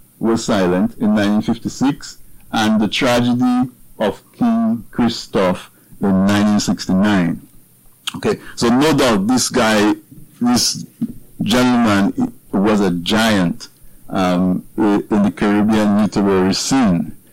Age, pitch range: 50-69, 95-125 Hz